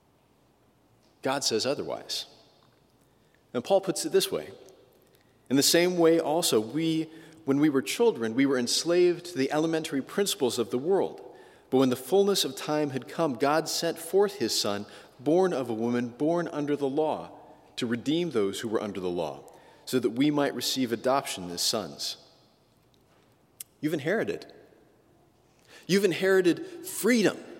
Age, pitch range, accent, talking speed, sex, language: 40-59, 135-180 Hz, American, 155 wpm, male, English